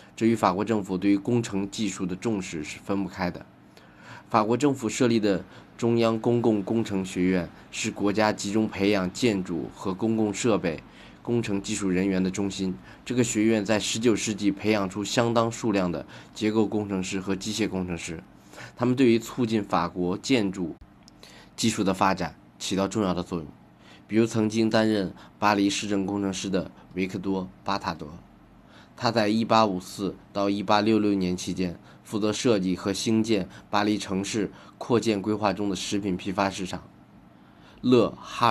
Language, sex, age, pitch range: Chinese, male, 20-39, 95-110 Hz